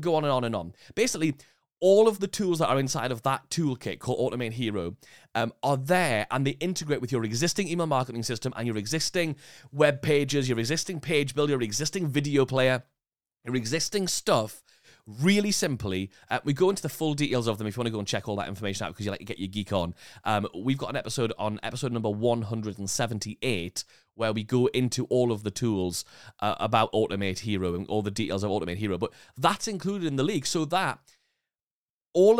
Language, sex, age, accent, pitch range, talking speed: English, male, 30-49, British, 115-170 Hz, 215 wpm